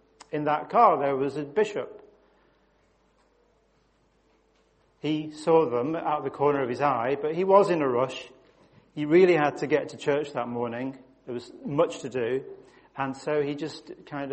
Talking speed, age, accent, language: 175 wpm, 40-59, British, English